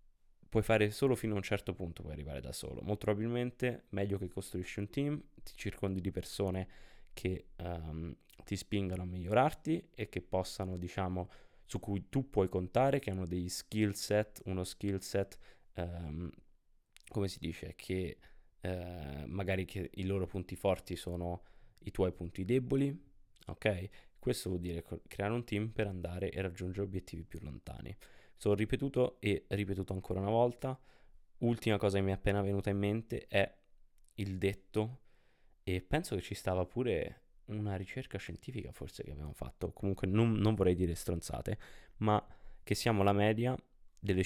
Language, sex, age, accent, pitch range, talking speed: Italian, male, 20-39, native, 90-105 Hz, 165 wpm